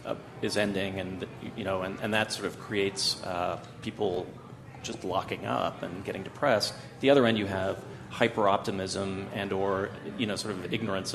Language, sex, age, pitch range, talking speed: English, male, 40-59, 100-120 Hz, 180 wpm